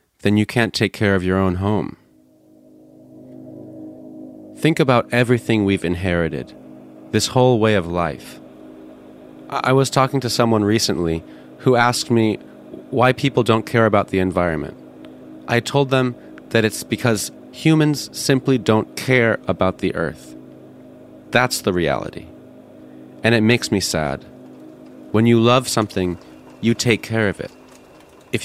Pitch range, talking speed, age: 80-115 Hz, 140 wpm, 30-49